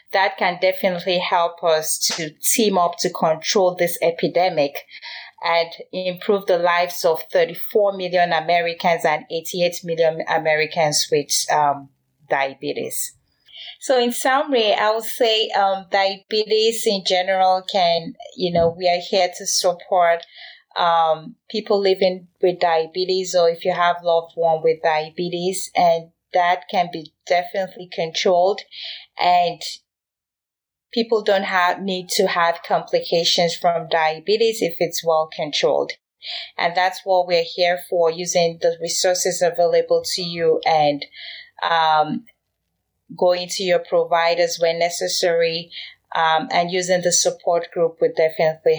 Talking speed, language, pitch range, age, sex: 130 wpm, English, 165-195 Hz, 30-49, female